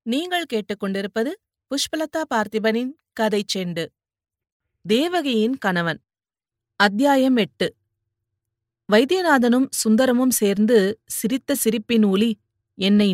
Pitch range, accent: 195-245 Hz, native